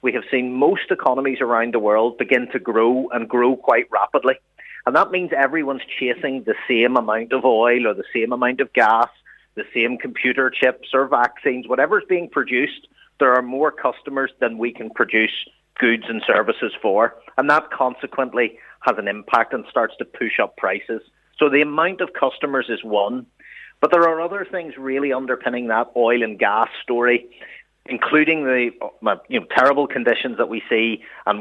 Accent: Irish